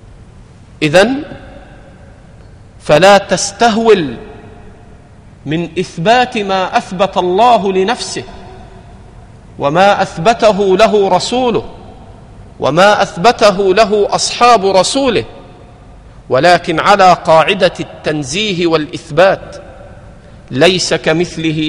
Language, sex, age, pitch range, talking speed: Arabic, male, 50-69, 145-200 Hz, 70 wpm